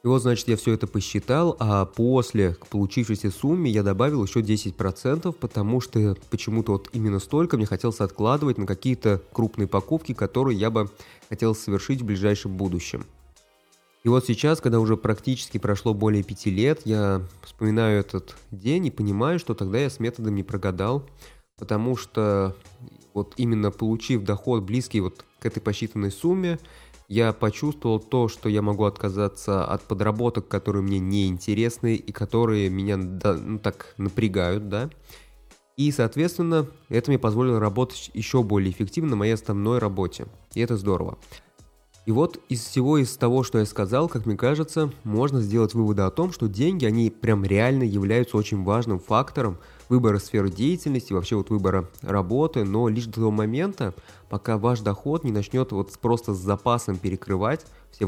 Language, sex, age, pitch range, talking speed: Russian, male, 20-39, 100-125 Hz, 160 wpm